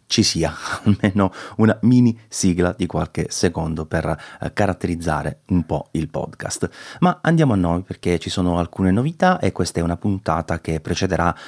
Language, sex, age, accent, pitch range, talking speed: Italian, male, 30-49, native, 80-110 Hz, 160 wpm